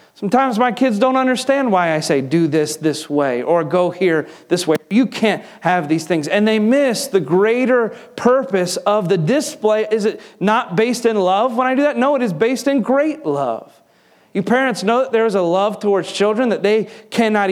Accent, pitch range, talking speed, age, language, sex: American, 155-220 Hz, 210 wpm, 30-49, English, male